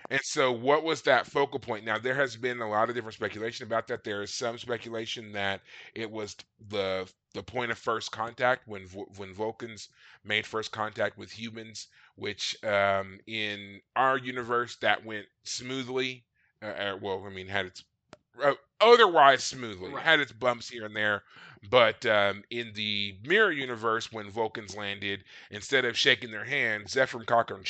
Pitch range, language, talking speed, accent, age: 100-125 Hz, English, 170 wpm, American, 30-49